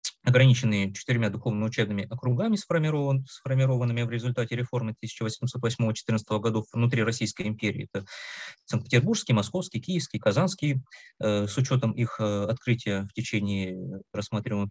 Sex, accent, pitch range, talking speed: male, native, 110-140 Hz, 100 wpm